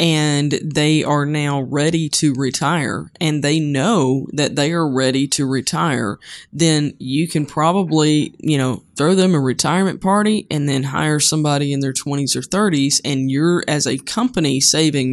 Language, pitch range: English, 140-175 Hz